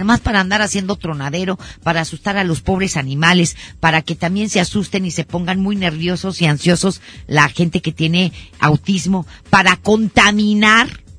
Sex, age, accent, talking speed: female, 50-69, Mexican, 160 wpm